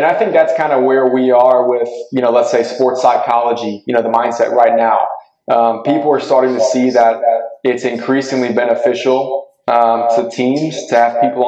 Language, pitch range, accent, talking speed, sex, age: English, 115-130 Hz, American, 200 wpm, male, 20-39